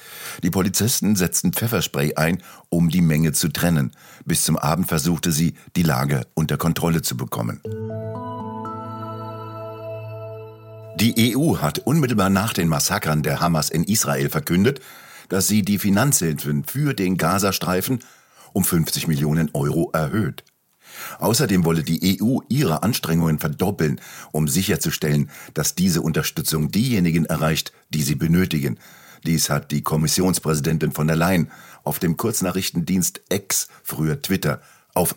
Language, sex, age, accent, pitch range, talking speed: German, male, 50-69, German, 75-100 Hz, 130 wpm